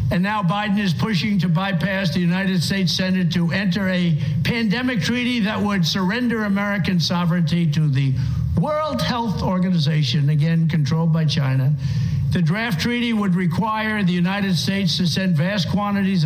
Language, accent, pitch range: English, American, 155-195 Hz